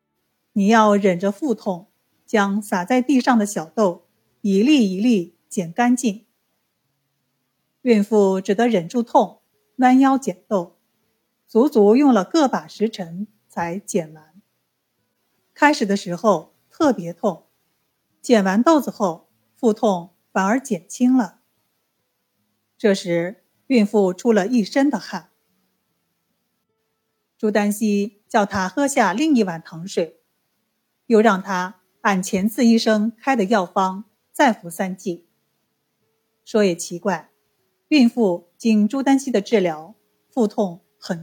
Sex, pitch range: female, 185-235 Hz